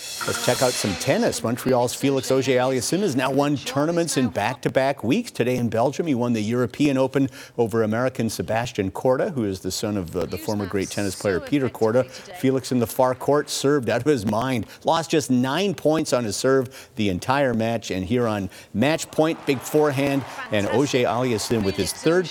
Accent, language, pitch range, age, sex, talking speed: American, English, 110-135 Hz, 50-69, male, 195 wpm